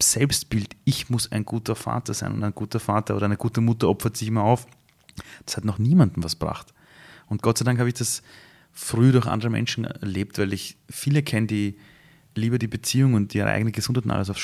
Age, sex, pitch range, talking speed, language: 30-49, male, 105-125 Hz, 215 wpm, German